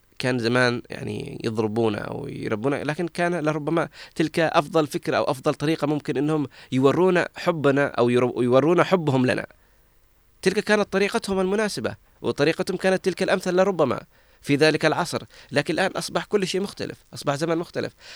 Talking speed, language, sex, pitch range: 150 wpm, Arabic, male, 140-190 Hz